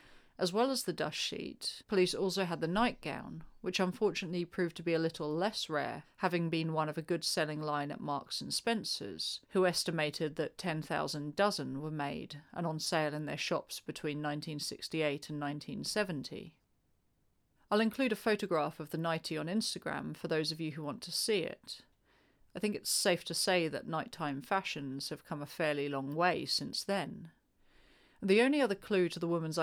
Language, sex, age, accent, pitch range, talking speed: English, female, 40-59, British, 155-200 Hz, 185 wpm